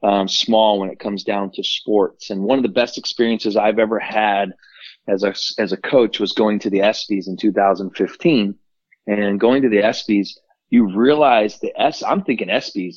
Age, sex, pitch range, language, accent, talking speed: 30-49, male, 100-115 Hz, English, American, 190 wpm